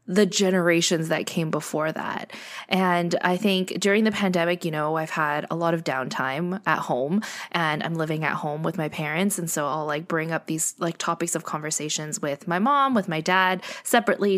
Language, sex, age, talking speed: English, female, 20-39, 200 wpm